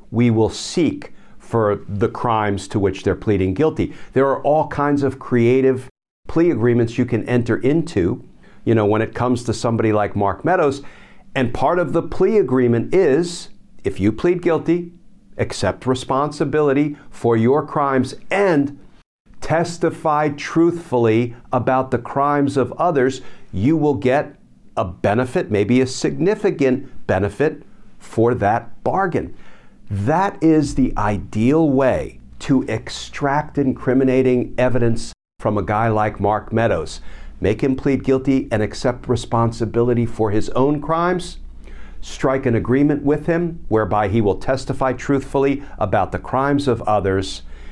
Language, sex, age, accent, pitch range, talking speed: English, male, 50-69, American, 105-145 Hz, 140 wpm